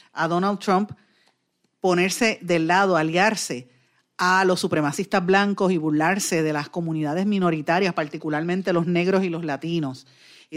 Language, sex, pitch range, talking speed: Spanish, female, 165-210 Hz, 135 wpm